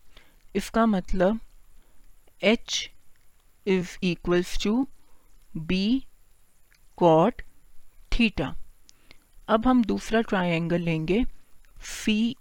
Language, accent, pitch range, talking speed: Hindi, native, 170-220 Hz, 75 wpm